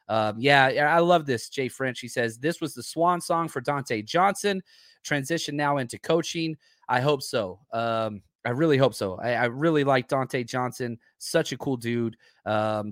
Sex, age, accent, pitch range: male, 30-49, American, 120-160 Hz